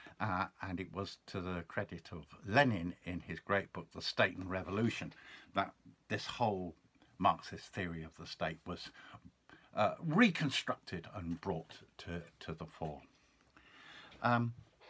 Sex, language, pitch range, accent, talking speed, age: male, English, 90-130 Hz, British, 140 wpm, 60-79